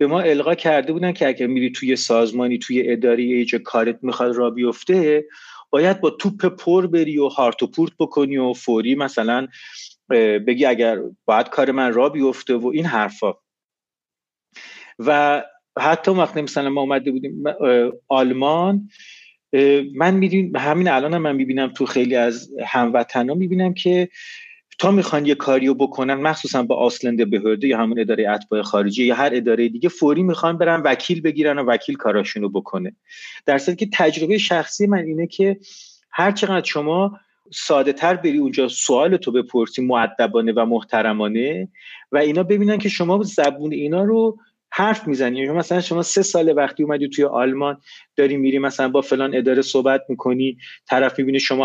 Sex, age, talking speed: male, 30-49, 155 wpm